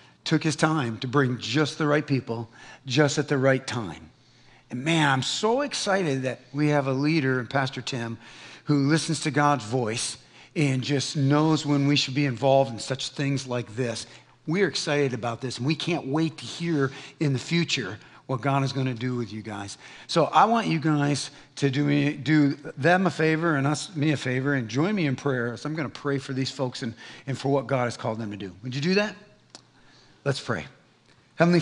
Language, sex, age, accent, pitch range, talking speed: English, male, 40-59, American, 130-160 Hz, 215 wpm